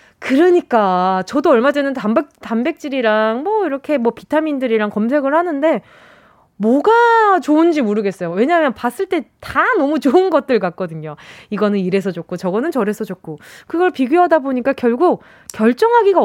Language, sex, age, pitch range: Korean, female, 20-39, 205-295 Hz